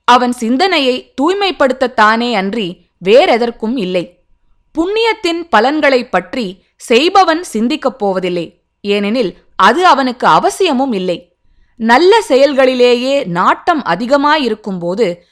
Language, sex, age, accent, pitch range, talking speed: Tamil, female, 20-39, native, 205-300 Hz, 80 wpm